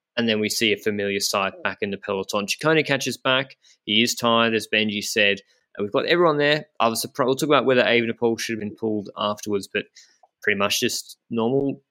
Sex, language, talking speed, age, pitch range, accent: male, English, 215 wpm, 20-39, 105-130 Hz, Australian